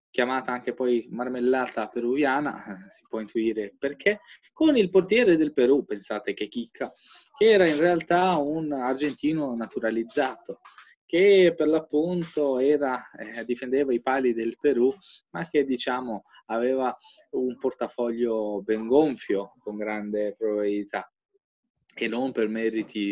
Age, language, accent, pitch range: 20-39, Italian, native, 115-150 Hz